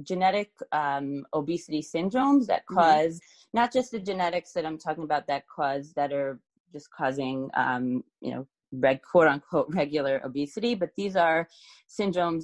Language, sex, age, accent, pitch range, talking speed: English, female, 20-39, American, 140-175 Hz, 155 wpm